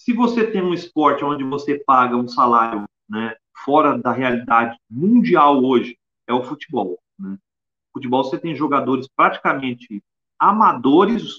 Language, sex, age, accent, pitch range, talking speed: Portuguese, male, 40-59, Brazilian, 130-190 Hz, 140 wpm